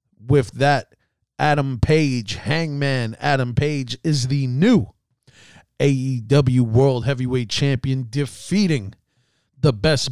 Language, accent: English, American